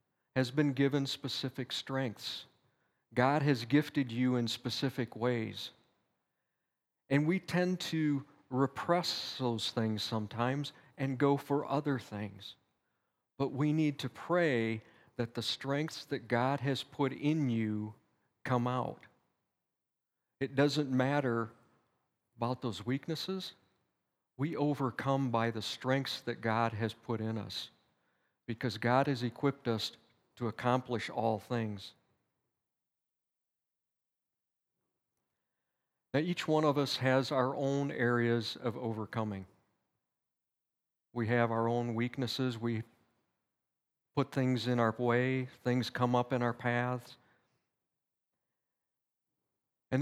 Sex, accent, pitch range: male, American, 115-140 Hz